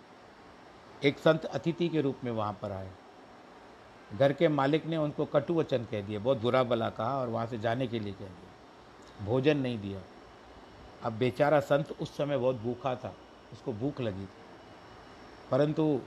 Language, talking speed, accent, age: Hindi, 170 wpm, native, 60-79